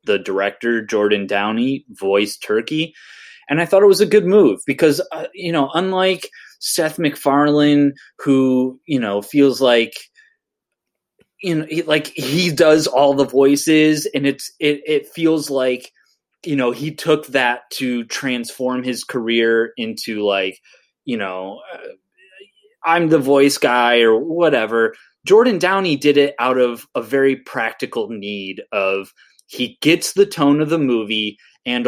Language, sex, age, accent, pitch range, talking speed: English, male, 20-39, American, 125-180 Hz, 145 wpm